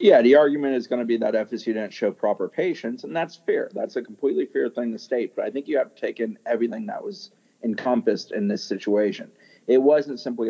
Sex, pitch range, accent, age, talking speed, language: male, 105-135 Hz, American, 40-59, 235 wpm, English